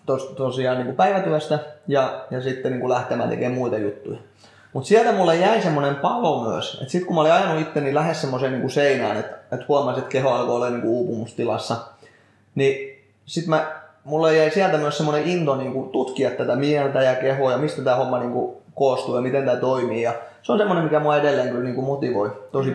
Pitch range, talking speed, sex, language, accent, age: 130-155 Hz, 170 wpm, male, Finnish, native, 20-39